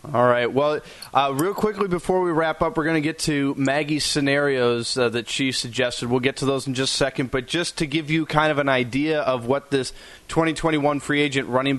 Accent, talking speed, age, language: American, 230 wpm, 30-49, English